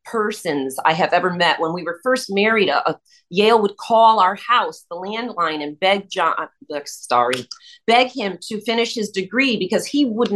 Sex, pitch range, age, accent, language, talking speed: female, 190-255 Hz, 40-59, American, English, 185 wpm